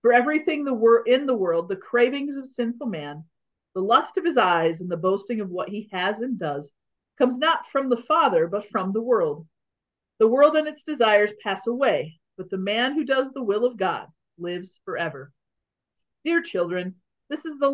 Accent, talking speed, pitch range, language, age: American, 190 wpm, 185-265 Hz, English, 40-59